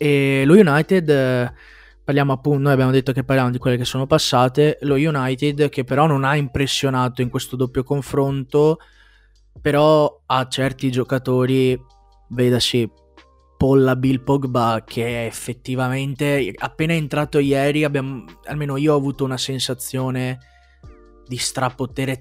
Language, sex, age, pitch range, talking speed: Italian, male, 20-39, 125-150 Hz, 135 wpm